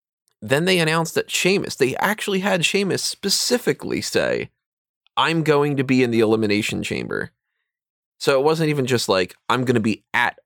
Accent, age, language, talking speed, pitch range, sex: American, 20-39, English, 170 wpm, 100-160 Hz, male